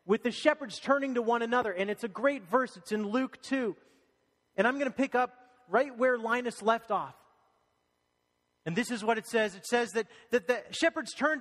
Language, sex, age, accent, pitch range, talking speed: English, male, 30-49, American, 155-245 Hz, 210 wpm